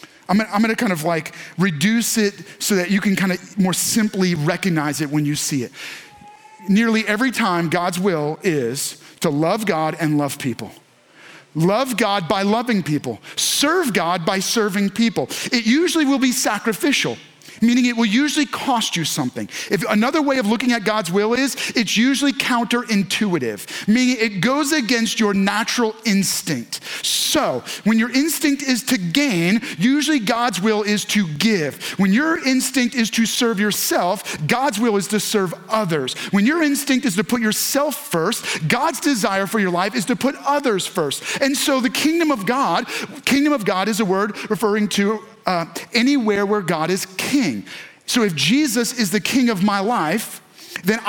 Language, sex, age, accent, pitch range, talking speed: English, male, 40-59, American, 195-250 Hz, 175 wpm